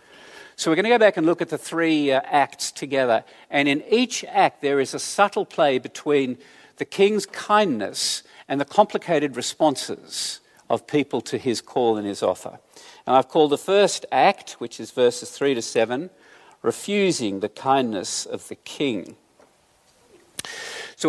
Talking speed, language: 165 wpm, English